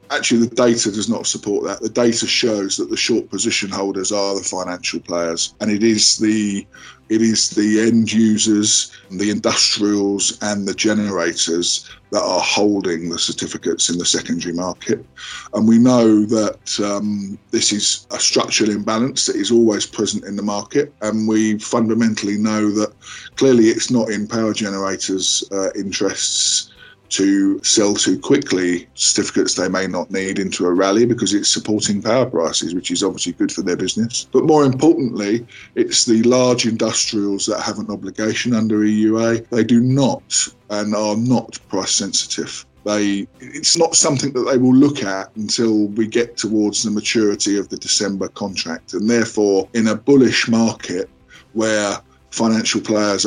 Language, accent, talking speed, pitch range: English, British, 165 wpm, 100-115 Hz